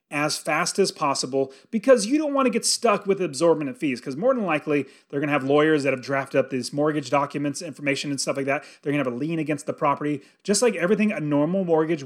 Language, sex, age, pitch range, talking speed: English, male, 30-49, 140-190 Hz, 255 wpm